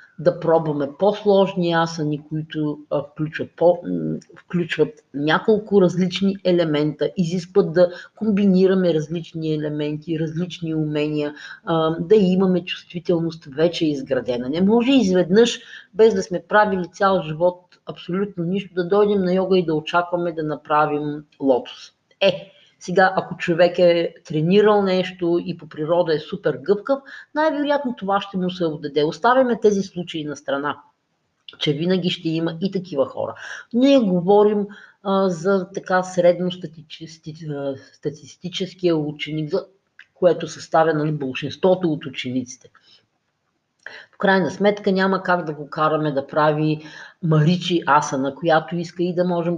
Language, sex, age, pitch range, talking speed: Bulgarian, female, 40-59, 150-185 Hz, 135 wpm